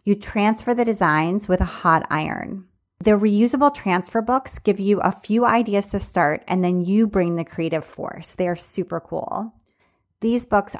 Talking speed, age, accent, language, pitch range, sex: 180 wpm, 30-49, American, English, 170-205 Hz, female